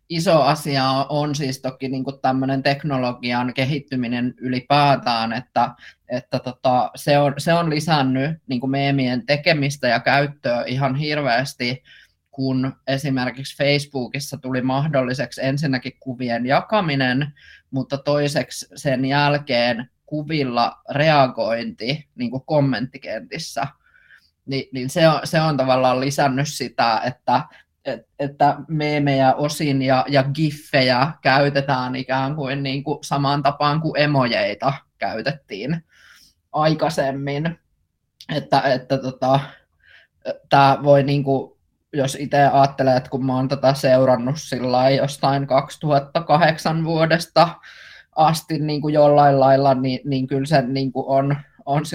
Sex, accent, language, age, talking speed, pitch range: male, native, Finnish, 20-39, 105 wpm, 130-145 Hz